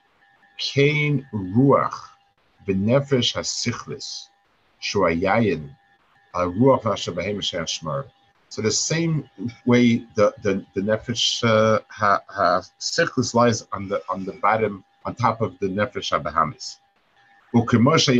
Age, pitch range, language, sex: 50-69, 95-125 Hz, English, male